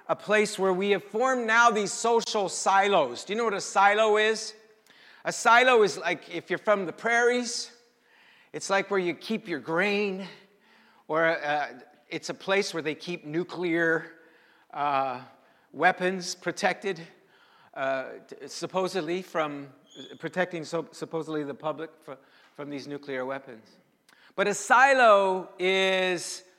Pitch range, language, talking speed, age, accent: 145-200 Hz, English, 140 wpm, 50-69, American